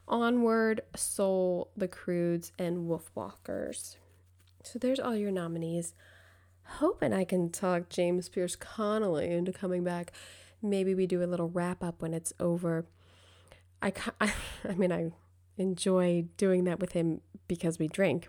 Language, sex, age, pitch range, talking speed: English, female, 20-39, 150-195 Hz, 145 wpm